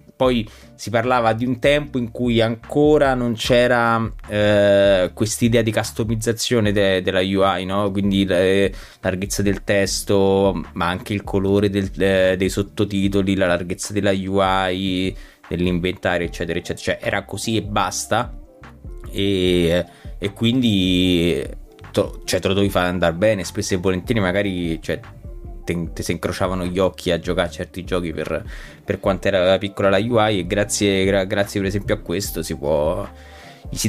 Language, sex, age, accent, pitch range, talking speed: Italian, male, 20-39, native, 95-110 Hz, 160 wpm